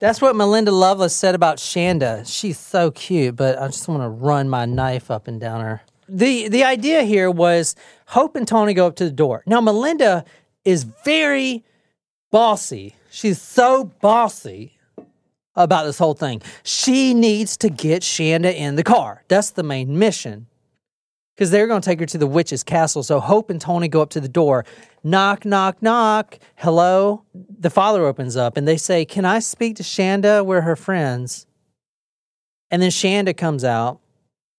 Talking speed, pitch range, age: 175 wpm, 145-200 Hz, 40-59